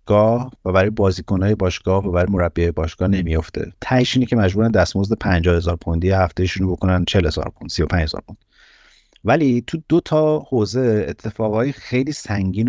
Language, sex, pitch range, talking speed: Persian, male, 90-115 Hz, 145 wpm